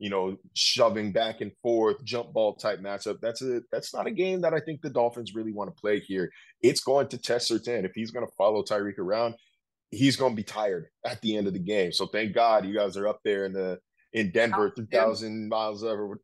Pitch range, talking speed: 95-120 Hz, 240 wpm